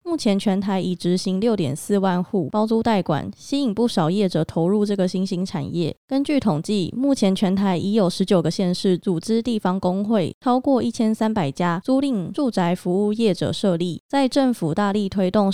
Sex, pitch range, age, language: female, 180-225 Hz, 20-39, Chinese